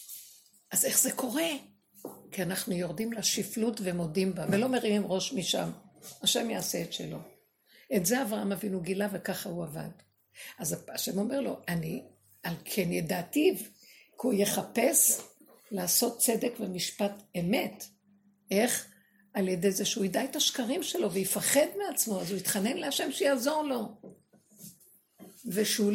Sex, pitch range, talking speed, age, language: female, 185-225 Hz, 135 wpm, 60-79, Hebrew